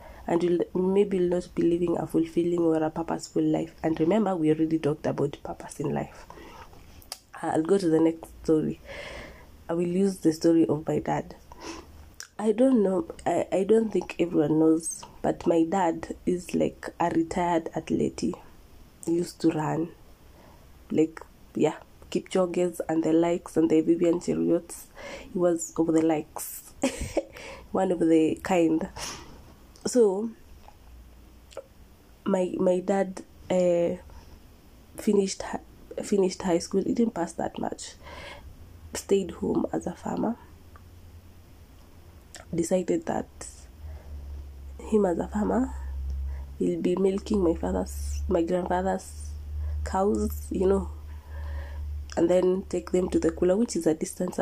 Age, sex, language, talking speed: 20-39, female, English, 135 wpm